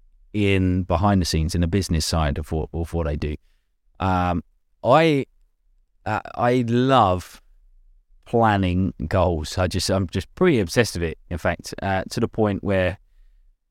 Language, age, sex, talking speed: English, 20-39, male, 160 wpm